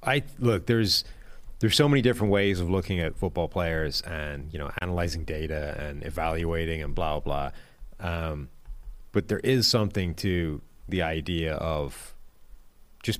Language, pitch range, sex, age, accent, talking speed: English, 90-115 Hz, male, 30-49, American, 155 wpm